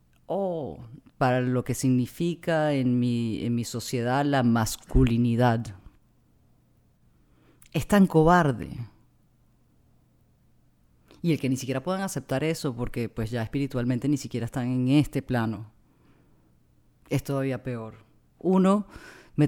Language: English